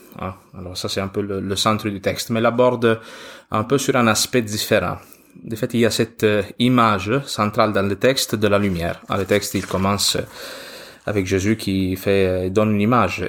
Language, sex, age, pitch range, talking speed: French, male, 20-39, 100-115 Hz, 195 wpm